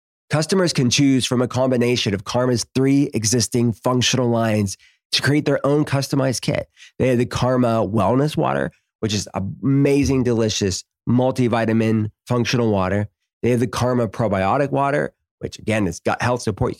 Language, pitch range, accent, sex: English, 105-130 Hz, American, male